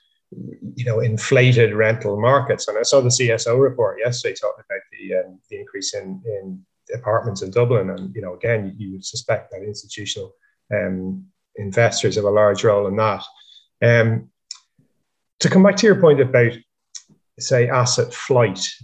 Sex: male